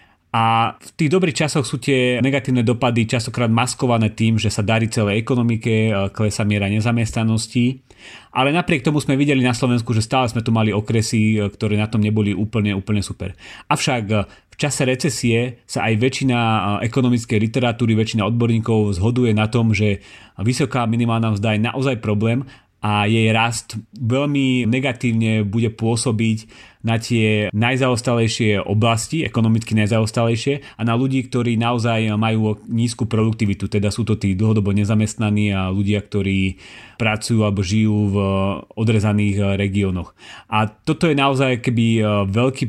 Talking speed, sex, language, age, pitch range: 145 wpm, male, Slovak, 30-49, 110-125 Hz